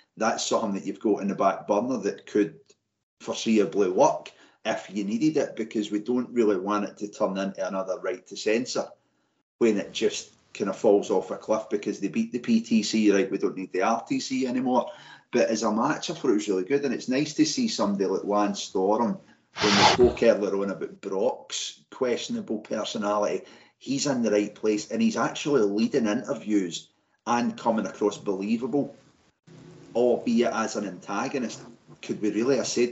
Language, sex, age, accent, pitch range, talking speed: English, male, 30-49, British, 100-130 Hz, 185 wpm